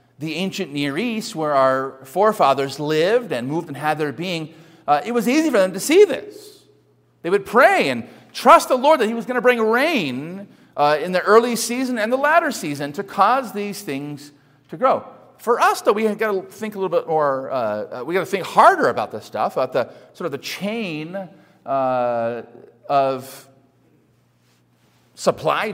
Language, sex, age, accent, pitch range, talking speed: English, male, 40-59, American, 115-165 Hz, 190 wpm